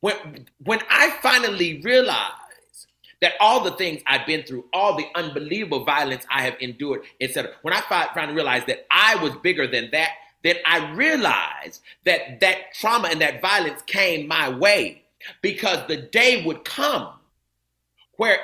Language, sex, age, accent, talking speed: English, male, 40-59, American, 160 wpm